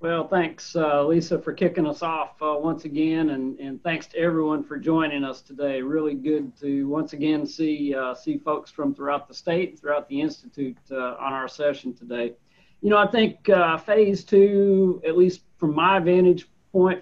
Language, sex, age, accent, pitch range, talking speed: English, male, 50-69, American, 140-175 Hz, 190 wpm